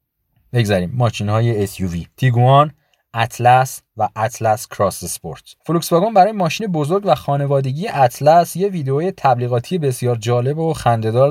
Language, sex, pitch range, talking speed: Persian, male, 120-155 Hz, 125 wpm